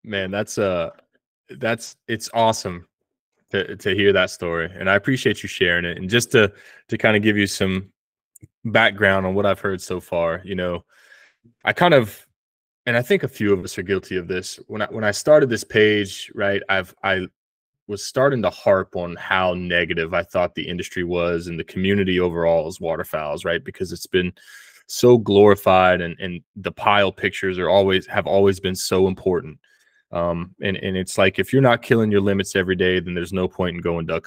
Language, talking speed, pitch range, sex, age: English, 205 wpm, 85-100 Hz, male, 20-39